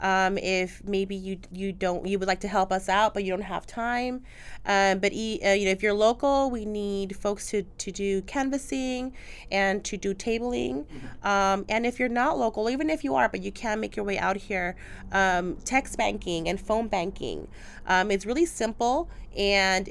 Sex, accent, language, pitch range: female, American, English, 185-215 Hz